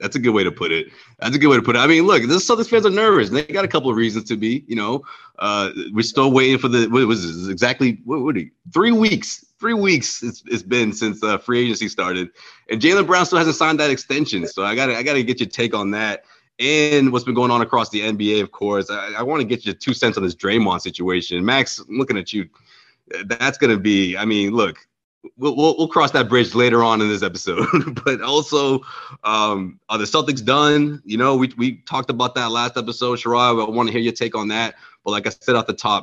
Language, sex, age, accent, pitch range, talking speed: English, male, 30-49, American, 105-140 Hz, 265 wpm